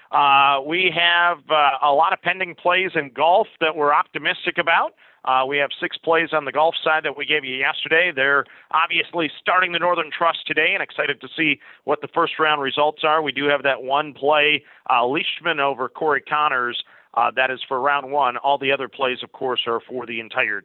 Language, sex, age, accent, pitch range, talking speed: English, male, 40-59, American, 135-170 Hz, 210 wpm